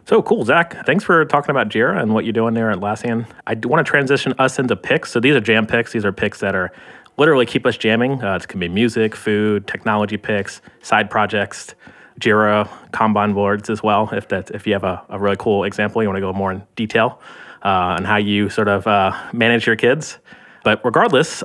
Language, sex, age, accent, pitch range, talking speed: English, male, 30-49, American, 100-120 Hz, 225 wpm